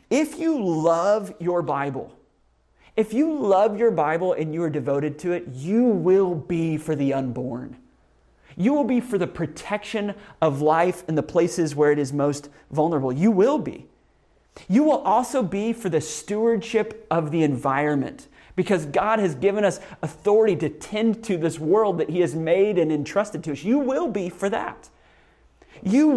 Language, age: English, 30-49